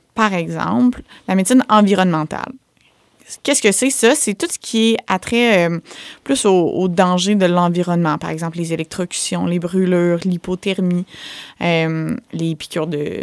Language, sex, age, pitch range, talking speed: French, female, 20-39, 170-215 Hz, 155 wpm